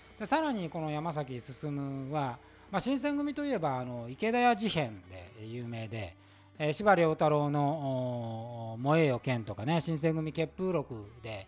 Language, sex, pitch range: Japanese, male, 115-170 Hz